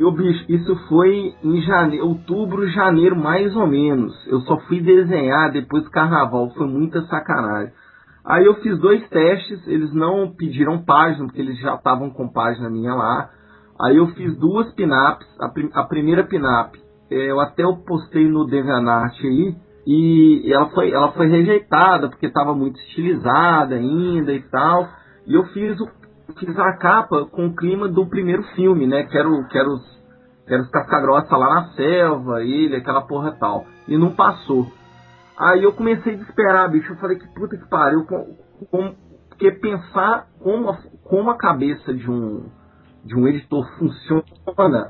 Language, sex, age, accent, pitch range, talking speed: Portuguese, male, 40-59, Brazilian, 135-185 Hz, 165 wpm